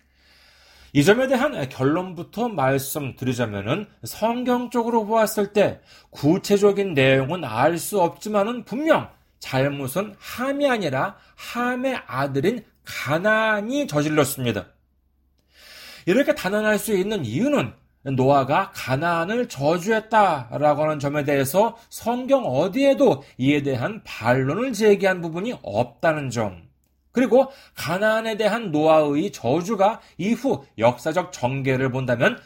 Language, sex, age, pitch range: Korean, male, 40-59, 135-220 Hz